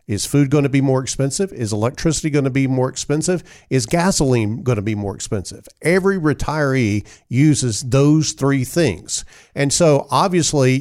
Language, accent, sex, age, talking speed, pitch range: English, American, male, 50-69, 165 wpm, 115-155 Hz